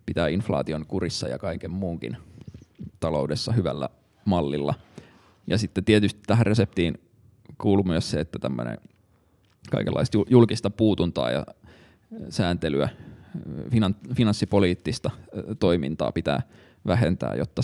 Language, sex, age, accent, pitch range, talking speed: Finnish, male, 20-39, native, 85-110 Hz, 100 wpm